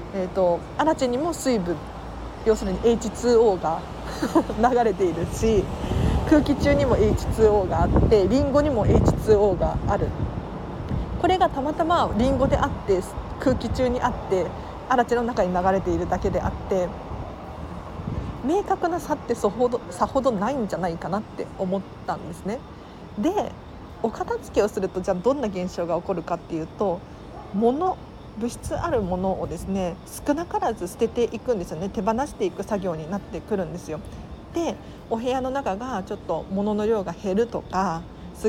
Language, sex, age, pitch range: Japanese, female, 40-59, 185-255 Hz